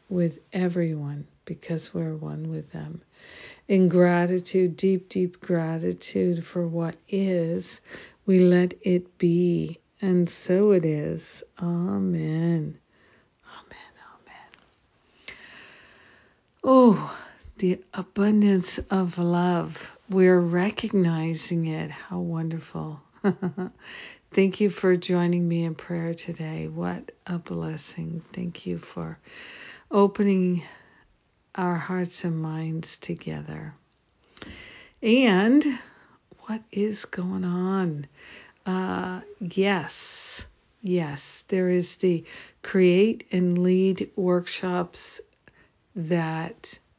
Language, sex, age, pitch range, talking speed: English, female, 60-79, 165-190 Hz, 90 wpm